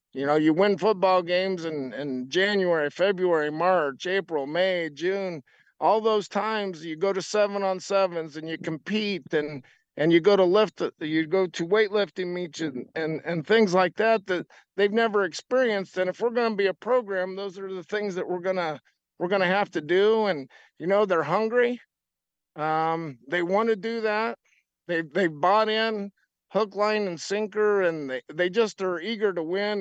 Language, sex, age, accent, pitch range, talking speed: English, male, 50-69, American, 170-210 Hz, 190 wpm